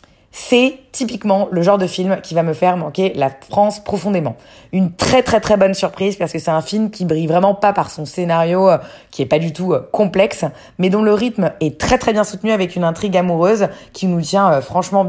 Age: 20-39